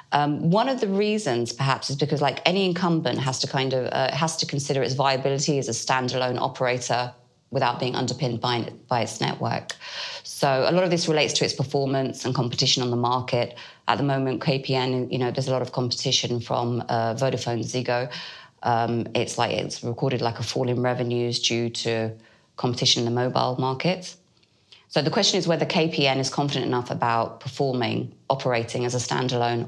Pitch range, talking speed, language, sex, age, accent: 120-145 Hz, 190 wpm, English, female, 20-39, British